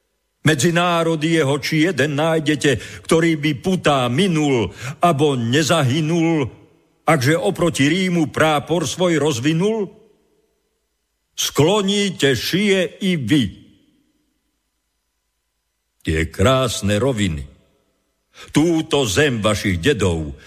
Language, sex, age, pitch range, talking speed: Slovak, male, 50-69, 110-160 Hz, 85 wpm